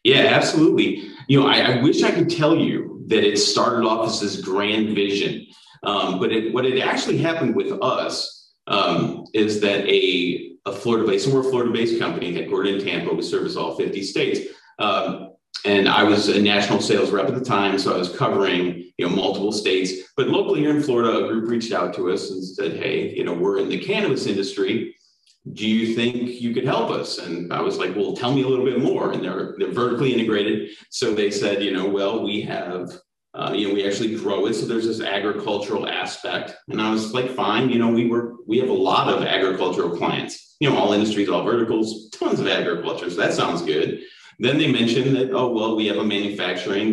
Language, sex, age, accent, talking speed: English, male, 40-59, American, 215 wpm